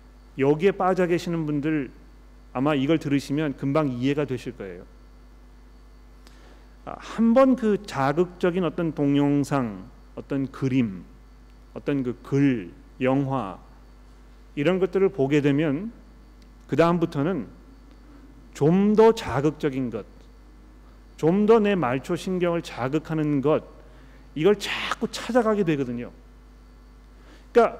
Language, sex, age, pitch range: Korean, male, 40-59, 135-180 Hz